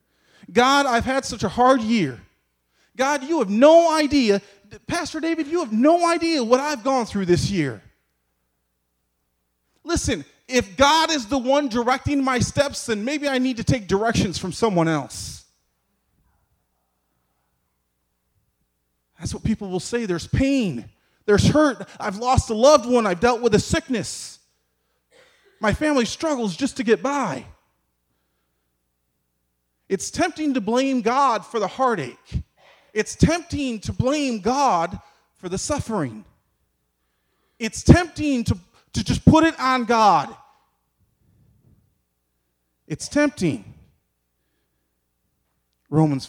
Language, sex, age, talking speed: English, male, 30-49, 125 wpm